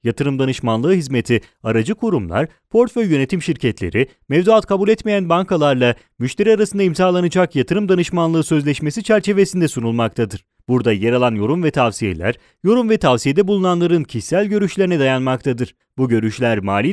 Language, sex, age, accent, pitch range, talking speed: English, male, 30-49, Turkish, 120-185 Hz, 130 wpm